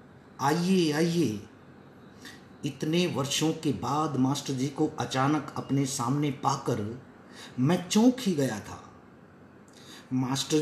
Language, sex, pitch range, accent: Hindi, male, 130-170 Hz, native